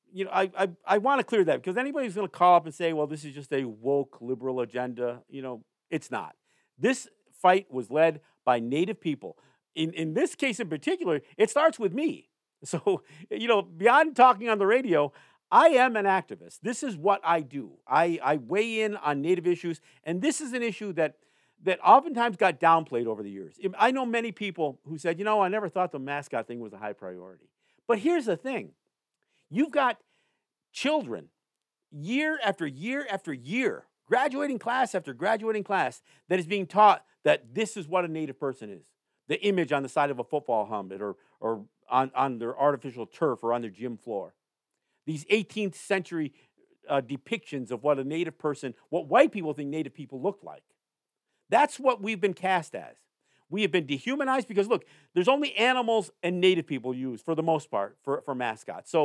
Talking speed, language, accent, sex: 200 wpm, English, American, male